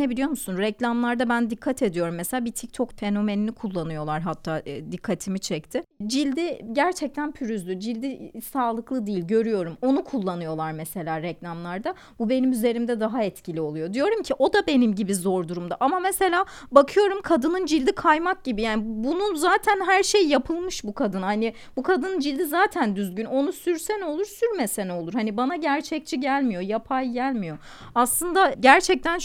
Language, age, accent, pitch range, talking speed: Turkish, 30-49, native, 200-280 Hz, 150 wpm